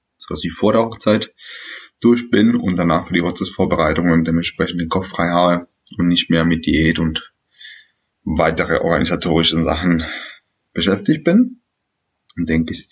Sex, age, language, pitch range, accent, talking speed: male, 20-39, German, 85-110 Hz, German, 160 wpm